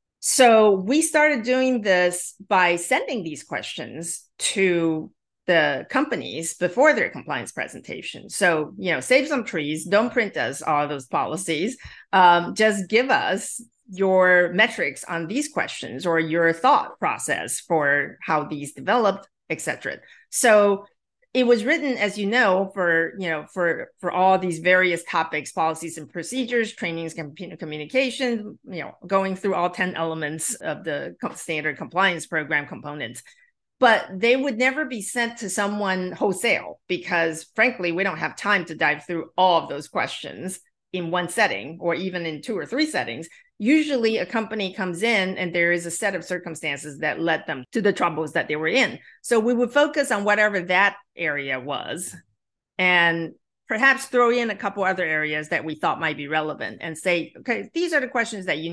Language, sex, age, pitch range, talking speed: English, female, 40-59, 165-230 Hz, 170 wpm